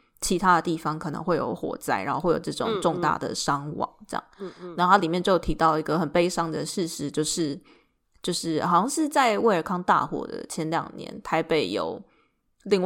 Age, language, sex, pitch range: 20-39, Chinese, female, 165-190 Hz